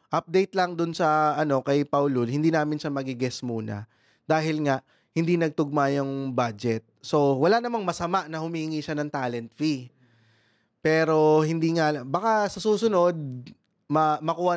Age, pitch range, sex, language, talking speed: 20-39, 135-185 Hz, male, Filipino, 150 wpm